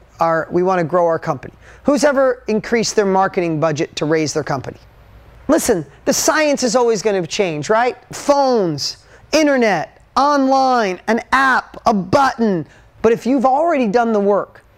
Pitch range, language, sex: 165-230 Hz, English, male